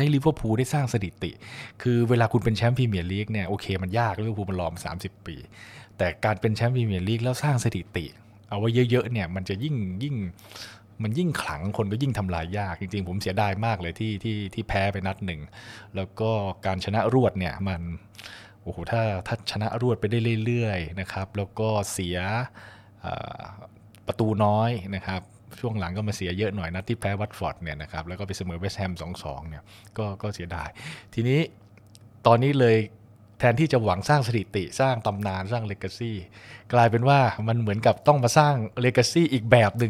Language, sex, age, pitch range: Thai, male, 20-39, 100-120 Hz